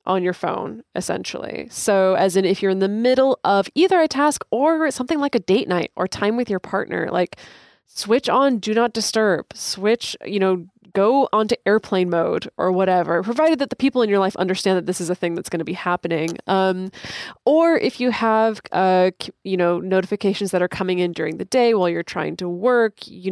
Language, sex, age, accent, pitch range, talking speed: English, female, 20-39, American, 175-225 Hz, 210 wpm